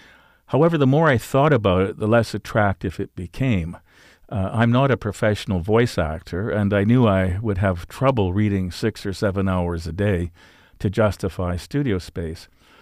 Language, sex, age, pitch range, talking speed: English, male, 50-69, 90-110 Hz, 175 wpm